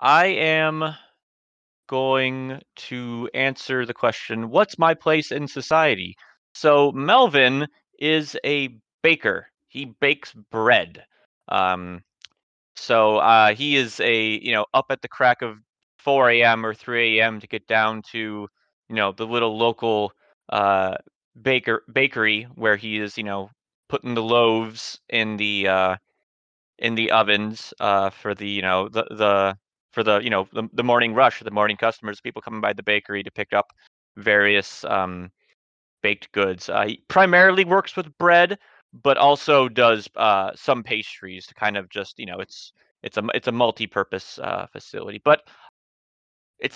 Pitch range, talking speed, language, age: 105-140 Hz, 155 wpm, English, 30-49